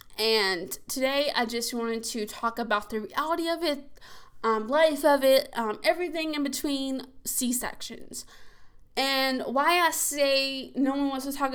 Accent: American